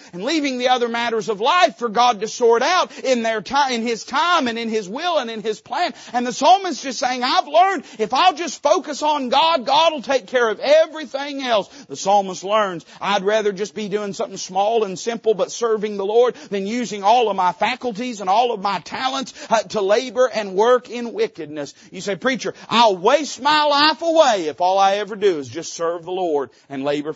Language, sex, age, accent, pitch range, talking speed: English, male, 40-59, American, 160-250 Hz, 220 wpm